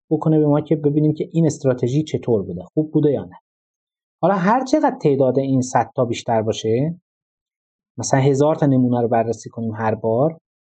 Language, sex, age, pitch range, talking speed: Persian, male, 30-49, 120-160 Hz, 180 wpm